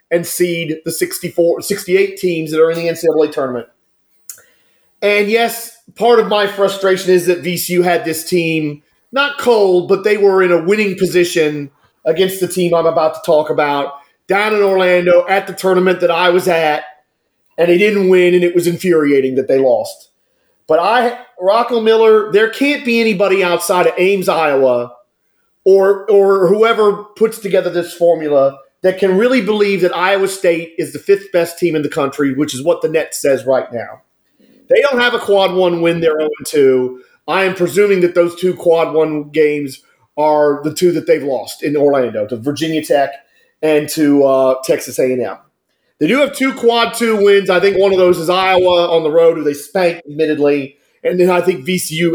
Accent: American